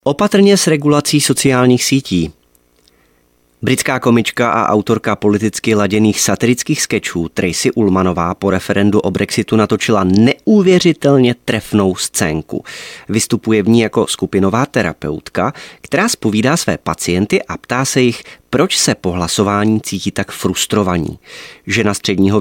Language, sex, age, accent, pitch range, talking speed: Czech, male, 30-49, native, 100-135 Hz, 125 wpm